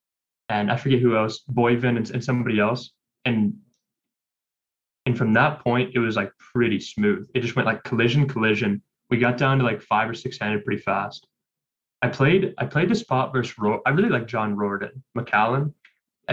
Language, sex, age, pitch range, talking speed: English, male, 10-29, 110-135 Hz, 190 wpm